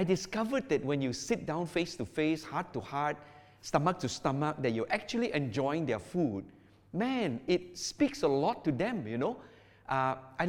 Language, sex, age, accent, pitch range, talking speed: English, male, 50-69, Malaysian, 130-200 Hz, 190 wpm